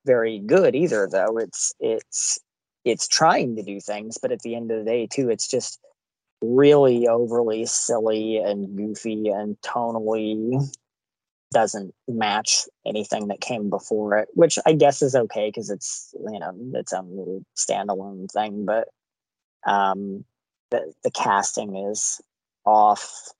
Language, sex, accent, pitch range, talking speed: English, male, American, 105-140 Hz, 140 wpm